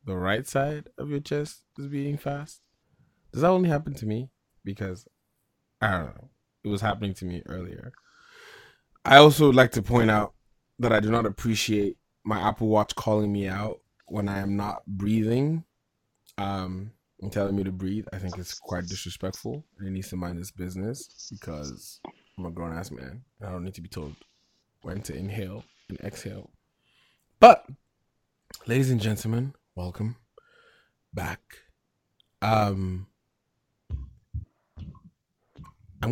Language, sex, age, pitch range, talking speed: English, male, 20-39, 95-120 Hz, 150 wpm